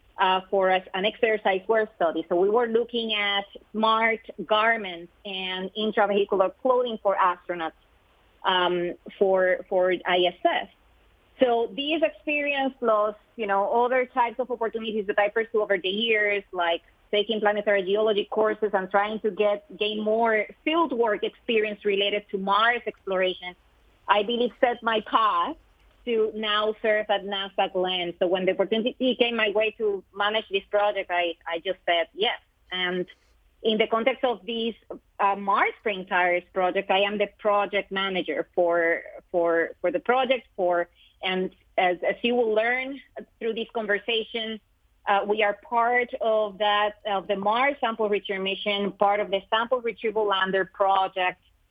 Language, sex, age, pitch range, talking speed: English, female, 30-49, 190-225 Hz, 155 wpm